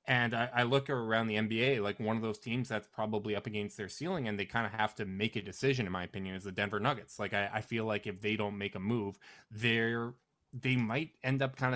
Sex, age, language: male, 20-39, English